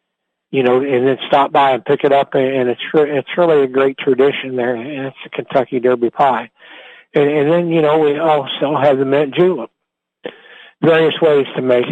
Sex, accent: male, American